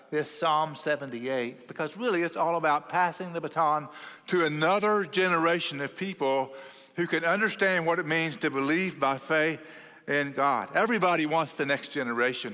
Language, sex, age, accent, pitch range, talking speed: English, male, 50-69, American, 135-170 Hz, 160 wpm